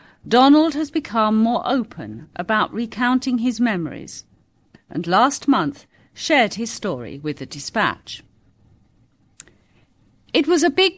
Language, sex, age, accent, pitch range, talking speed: English, female, 50-69, British, 150-250 Hz, 120 wpm